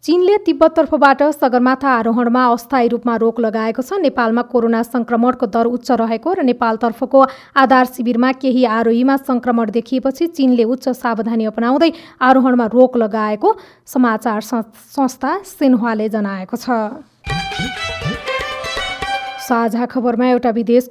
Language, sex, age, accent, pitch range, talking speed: English, female, 30-49, Indian, 230-265 Hz, 150 wpm